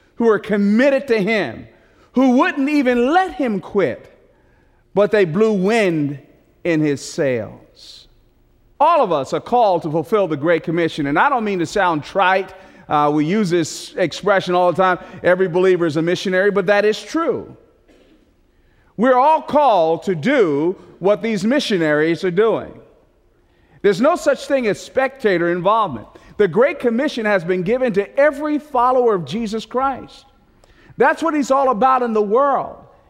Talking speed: 160 wpm